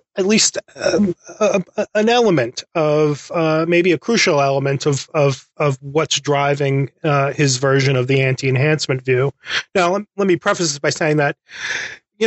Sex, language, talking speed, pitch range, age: male, English, 160 wpm, 140-170 Hz, 30-49